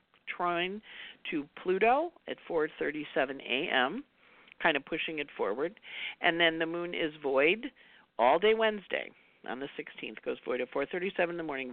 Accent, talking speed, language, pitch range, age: American, 175 wpm, English, 145-215 Hz, 50-69